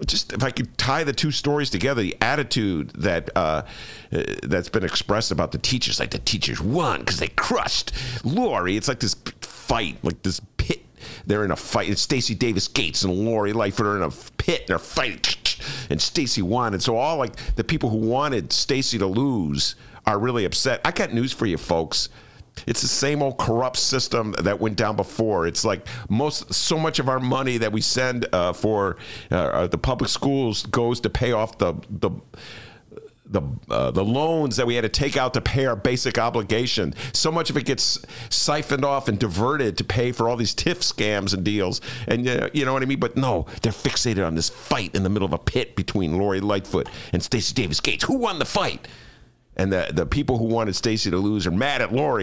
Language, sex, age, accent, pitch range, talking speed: English, male, 50-69, American, 95-130 Hz, 210 wpm